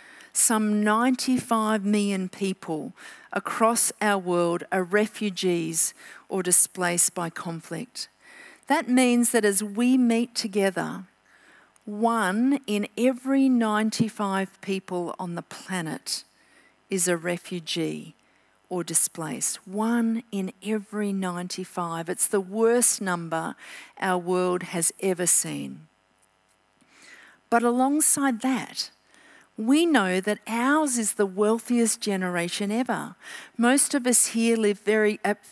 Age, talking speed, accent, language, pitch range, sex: 50-69, 110 wpm, Australian, English, 185-225 Hz, female